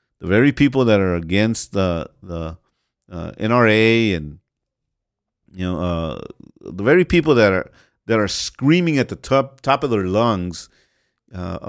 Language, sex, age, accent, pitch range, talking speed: English, male, 50-69, American, 95-130 Hz, 155 wpm